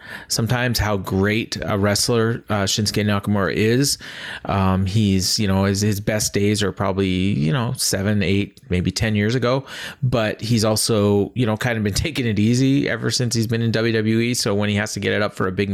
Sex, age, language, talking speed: male, 30-49, English, 210 wpm